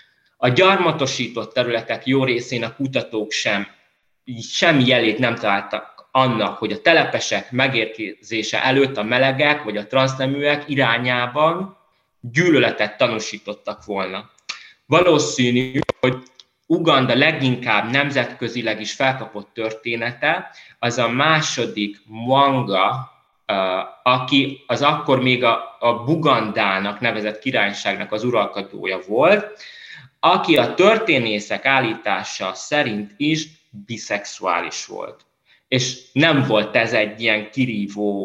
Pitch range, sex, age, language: 115-145 Hz, male, 20-39, Hungarian